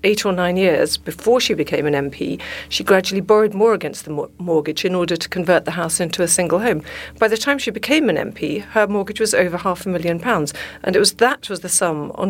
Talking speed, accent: 240 wpm, British